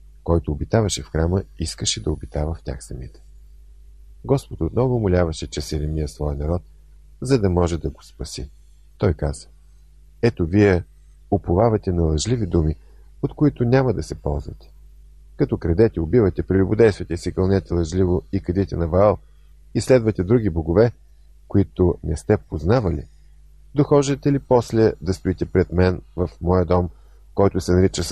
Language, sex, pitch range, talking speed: Bulgarian, male, 75-95 Hz, 150 wpm